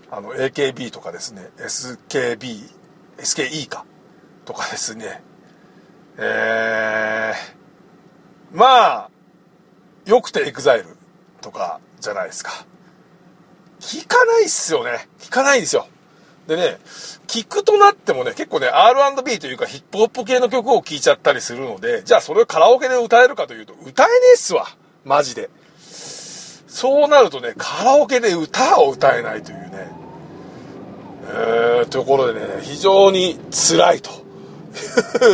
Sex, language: male, Japanese